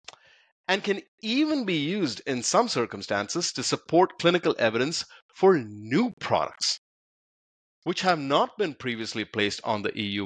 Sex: male